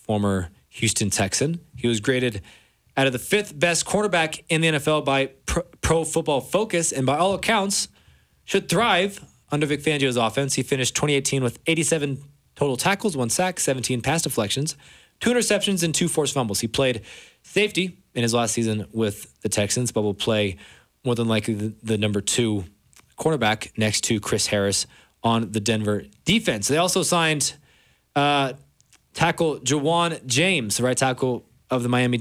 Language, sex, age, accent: English, male, 20-39, American